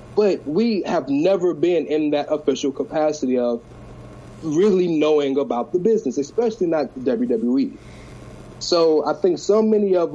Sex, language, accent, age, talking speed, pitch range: male, English, American, 30-49, 150 wpm, 130-170 Hz